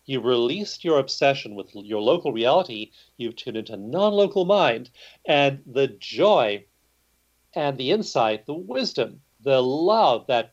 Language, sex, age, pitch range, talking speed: English, male, 40-59, 115-160 Hz, 135 wpm